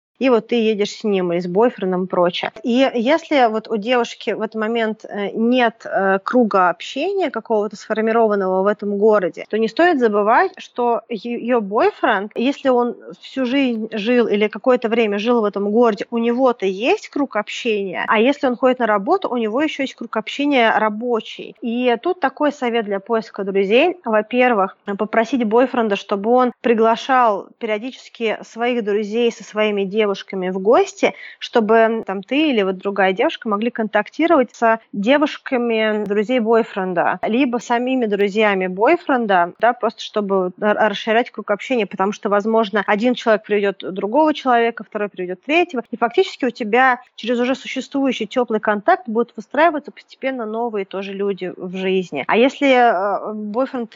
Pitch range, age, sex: 210-250 Hz, 20-39, female